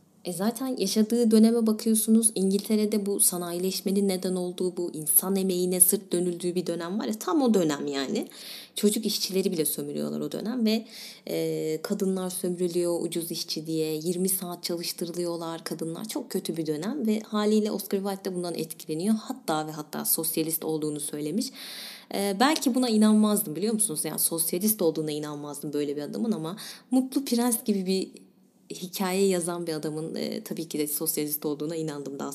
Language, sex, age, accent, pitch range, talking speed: Turkish, female, 20-39, native, 170-230 Hz, 155 wpm